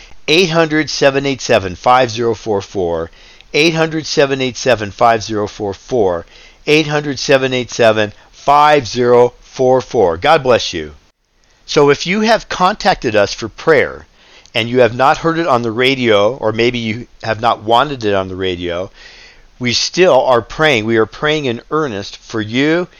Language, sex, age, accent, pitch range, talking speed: English, male, 50-69, American, 105-145 Hz, 175 wpm